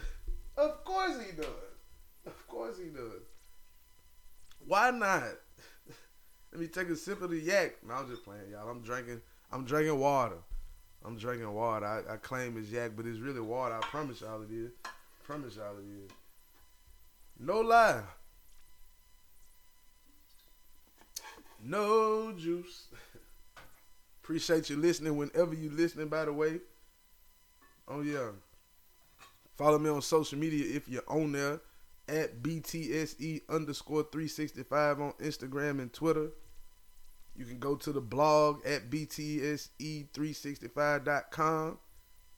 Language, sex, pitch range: English, male, 100-155 Hz